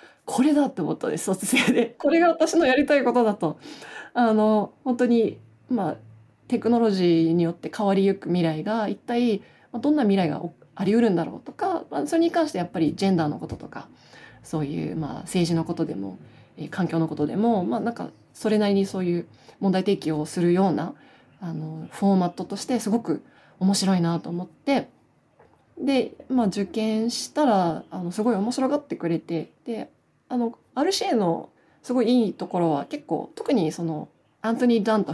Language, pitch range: Japanese, 170-240 Hz